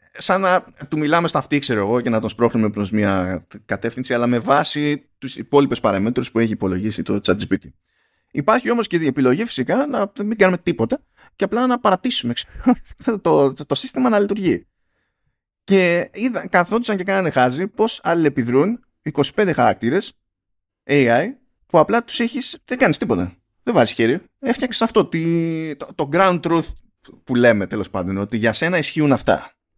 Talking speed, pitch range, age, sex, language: 170 wpm, 115-185 Hz, 20-39, male, Greek